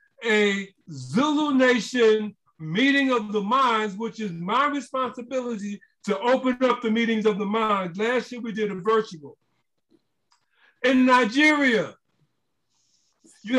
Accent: American